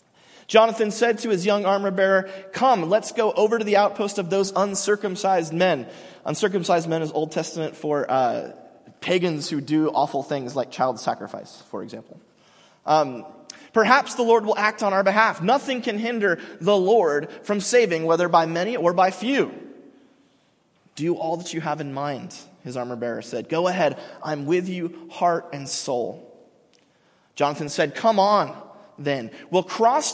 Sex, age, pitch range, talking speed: male, 30-49, 155-210 Hz, 160 wpm